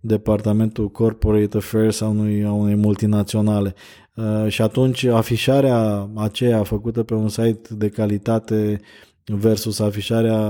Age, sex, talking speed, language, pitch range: 20-39, male, 120 wpm, Romanian, 110-120 Hz